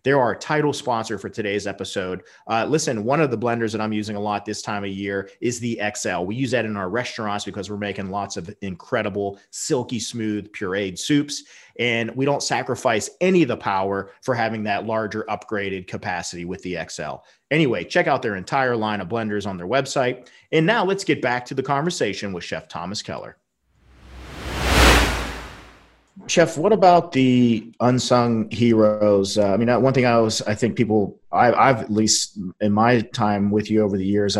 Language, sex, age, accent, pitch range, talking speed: English, male, 40-59, American, 100-115 Hz, 190 wpm